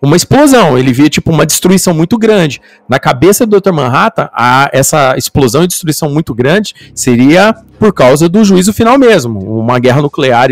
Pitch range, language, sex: 135-190 Hz, Portuguese, male